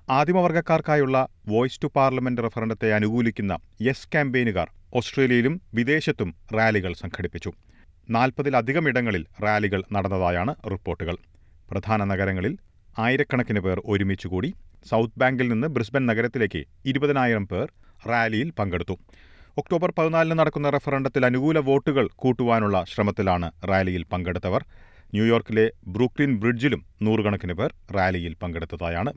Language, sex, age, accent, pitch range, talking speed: Malayalam, male, 40-59, native, 95-130 Hz, 100 wpm